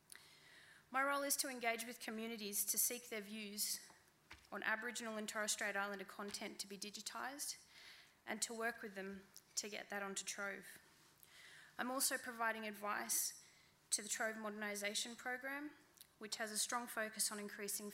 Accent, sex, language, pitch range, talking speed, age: Australian, female, English, 200-230 Hz, 155 wpm, 20-39